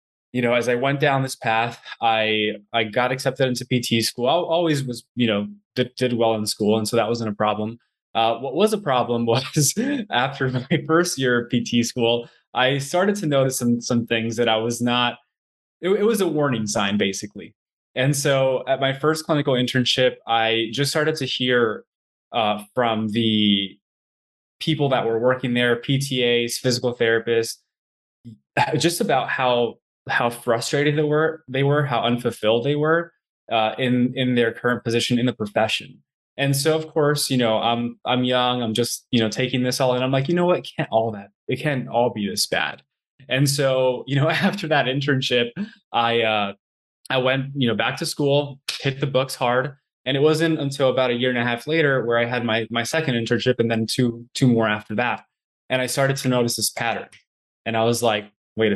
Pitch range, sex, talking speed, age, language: 115-140 Hz, male, 200 wpm, 20-39, English